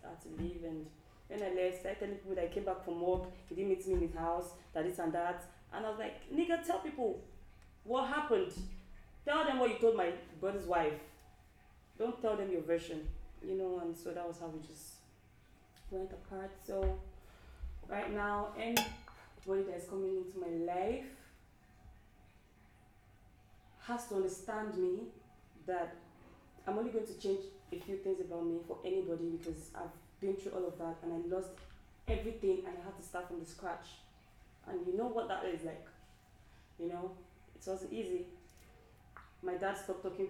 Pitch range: 165-200 Hz